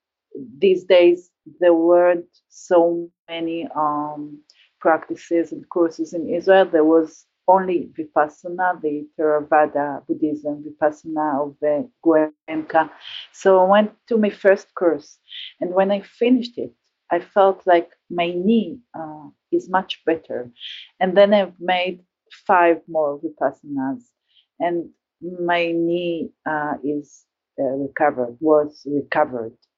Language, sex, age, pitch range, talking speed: English, female, 40-59, 160-210 Hz, 120 wpm